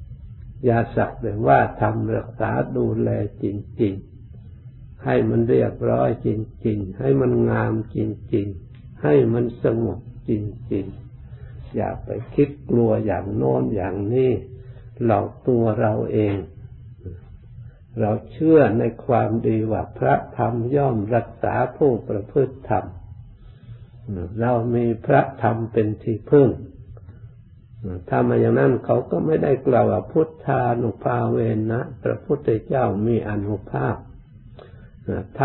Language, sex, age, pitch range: Thai, male, 60-79, 105-120 Hz